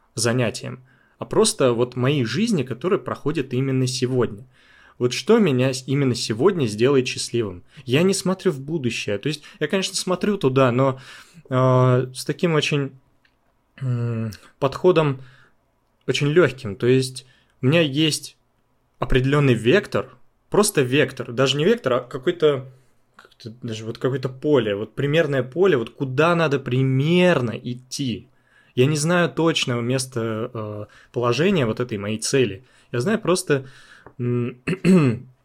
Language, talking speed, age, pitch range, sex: Russian, 130 wpm, 20-39, 120-145 Hz, male